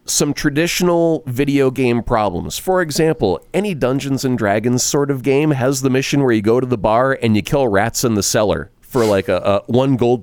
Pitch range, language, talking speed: 110-145 Hz, English, 210 wpm